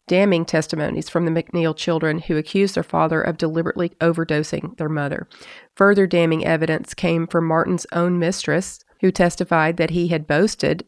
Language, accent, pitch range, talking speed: English, American, 165-195 Hz, 160 wpm